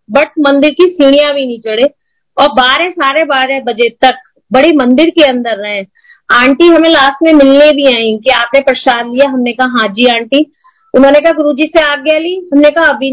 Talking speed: 200 wpm